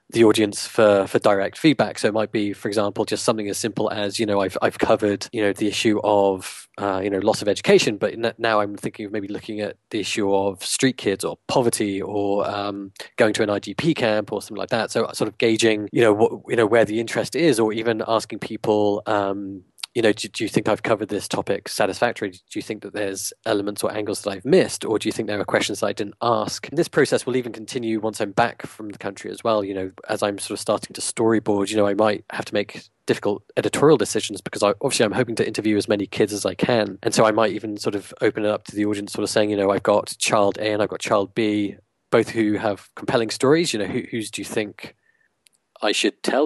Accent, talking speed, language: British, 255 wpm, English